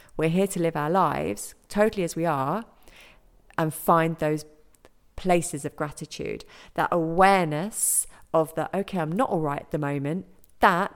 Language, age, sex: English, 40-59, female